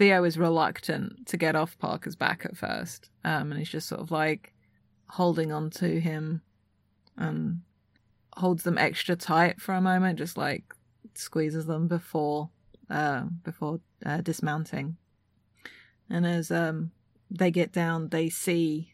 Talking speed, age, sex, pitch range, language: 145 wpm, 30-49, female, 150-175 Hz, English